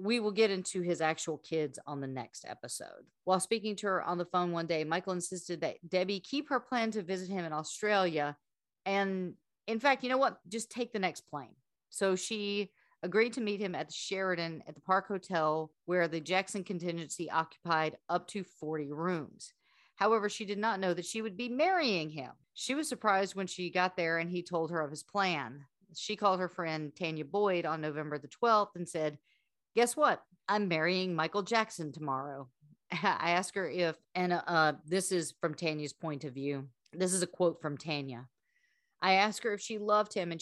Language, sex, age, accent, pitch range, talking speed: English, female, 40-59, American, 160-200 Hz, 200 wpm